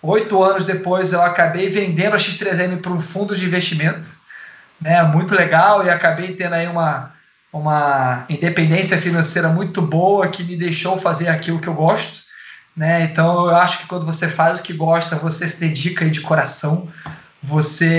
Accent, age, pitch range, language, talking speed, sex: Brazilian, 20-39, 165-200 Hz, Portuguese, 175 wpm, male